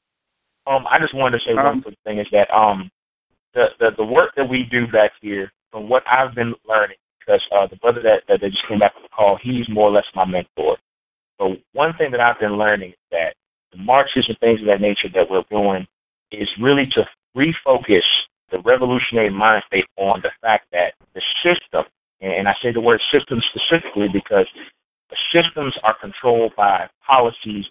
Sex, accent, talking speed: male, American, 195 wpm